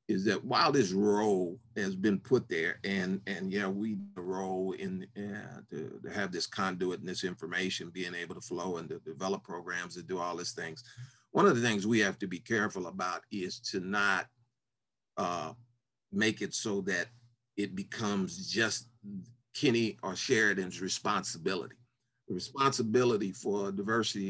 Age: 40-59